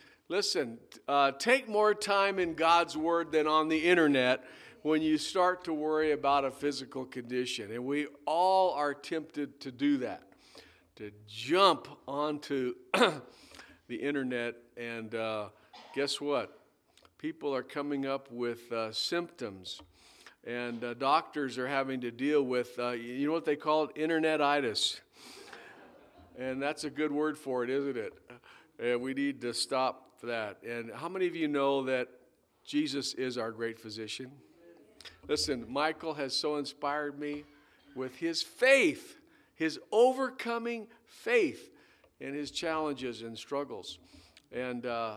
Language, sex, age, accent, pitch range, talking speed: English, male, 50-69, American, 130-170 Hz, 140 wpm